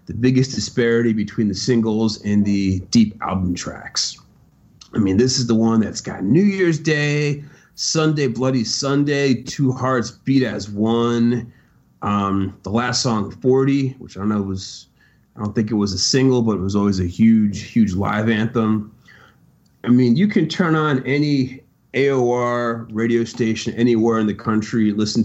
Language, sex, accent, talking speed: English, male, American, 170 wpm